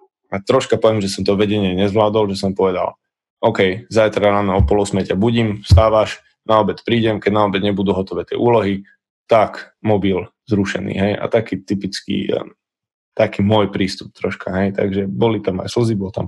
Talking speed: 175 wpm